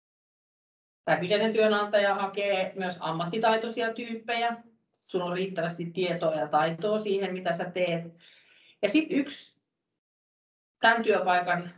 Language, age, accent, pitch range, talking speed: Finnish, 30-49, native, 160-210 Hz, 110 wpm